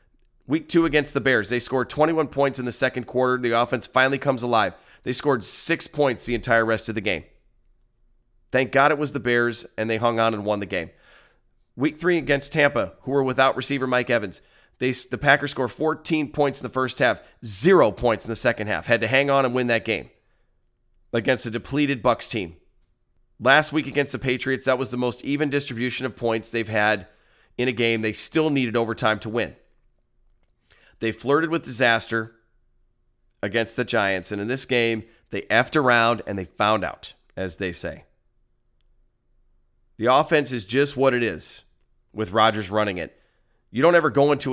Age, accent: 30-49, American